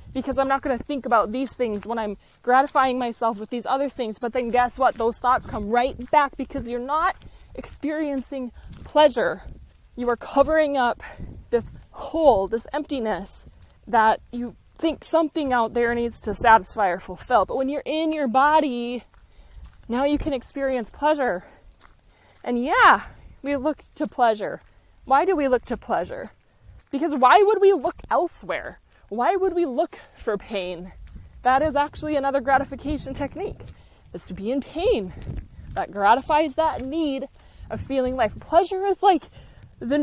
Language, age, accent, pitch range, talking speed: English, 20-39, American, 235-295 Hz, 160 wpm